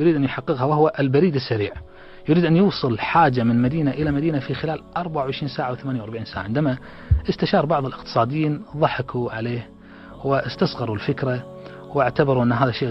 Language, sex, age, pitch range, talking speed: Arabic, male, 30-49, 115-155 Hz, 155 wpm